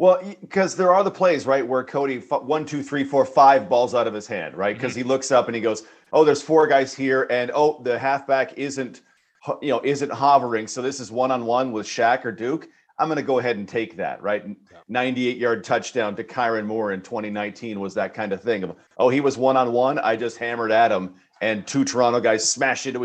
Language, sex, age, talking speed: English, male, 40-59, 220 wpm